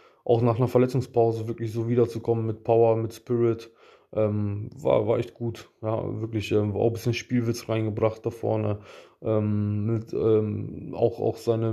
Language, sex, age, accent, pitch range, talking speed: German, male, 20-39, German, 110-125 Hz, 165 wpm